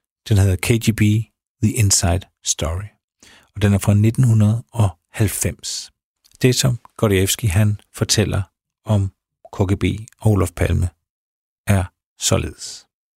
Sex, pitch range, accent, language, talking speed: male, 95-115 Hz, native, Danish, 105 wpm